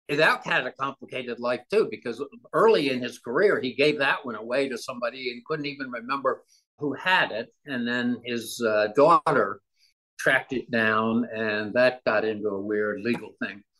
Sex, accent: male, American